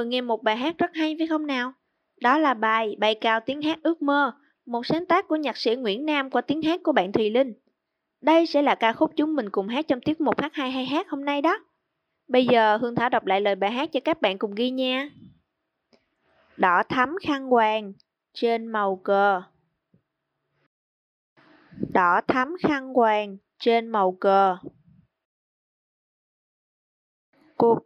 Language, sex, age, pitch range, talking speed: Vietnamese, female, 20-39, 215-290 Hz, 175 wpm